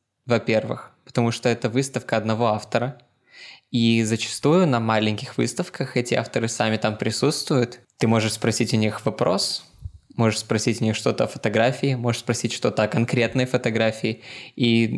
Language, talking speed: Russian, 150 wpm